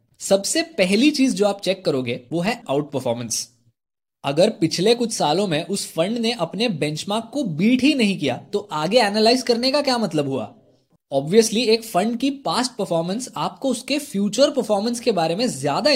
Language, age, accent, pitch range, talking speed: Hindi, 20-39, native, 165-250 Hz, 180 wpm